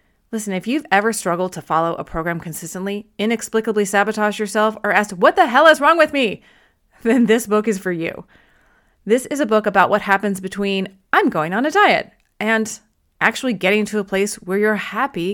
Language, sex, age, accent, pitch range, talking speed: English, female, 30-49, American, 180-225 Hz, 195 wpm